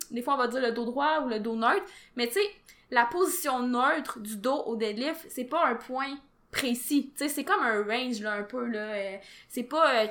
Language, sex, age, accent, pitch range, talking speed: French, female, 20-39, Canadian, 235-285 Hz, 245 wpm